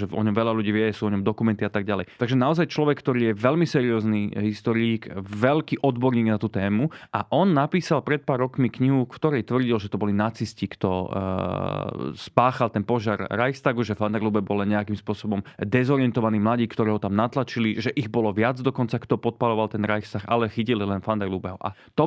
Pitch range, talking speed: 110-130 Hz, 190 wpm